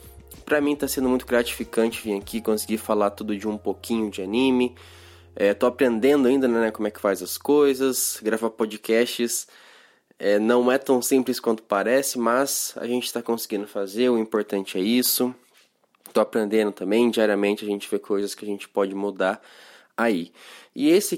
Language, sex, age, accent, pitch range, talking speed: Portuguese, male, 20-39, Brazilian, 105-125 Hz, 175 wpm